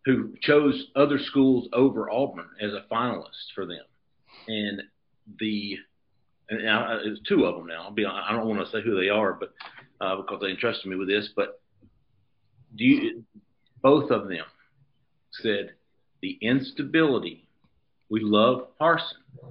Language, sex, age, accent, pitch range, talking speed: English, male, 50-69, American, 110-145 Hz, 140 wpm